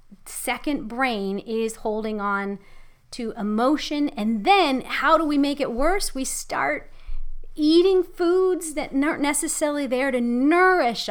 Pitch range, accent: 210-270 Hz, American